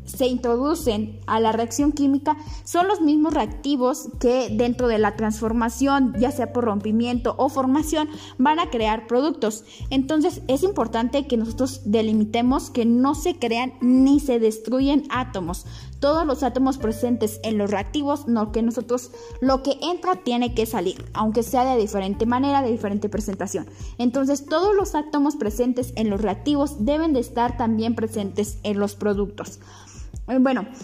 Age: 10-29